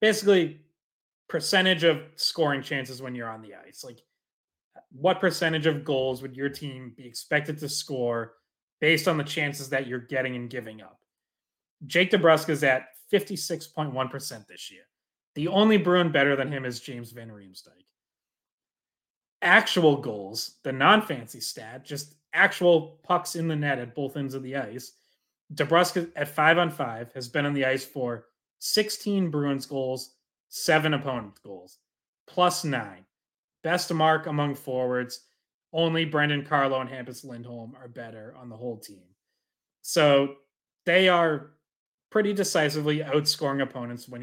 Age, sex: 30-49, male